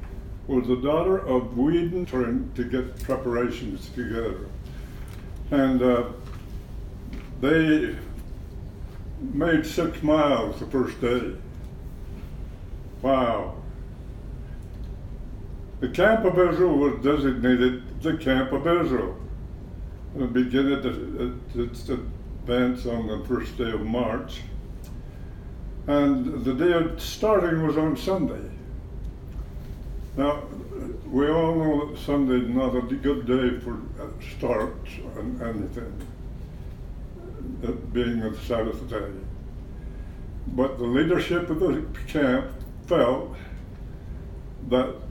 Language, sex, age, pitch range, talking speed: English, male, 60-79, 105-135 Hz, 100 wpm